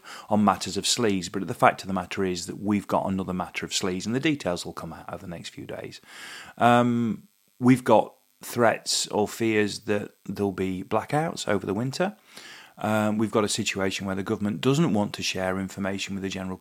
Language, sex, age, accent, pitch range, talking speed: English, male, 30-49, British, 95-110 Hz, 210 wpm